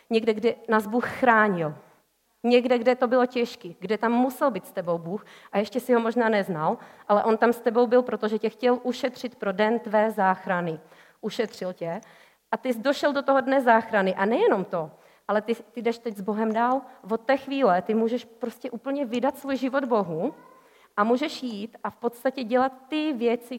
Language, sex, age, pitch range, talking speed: Czech, female, 30-49, 200-250 Hz, 200 wpm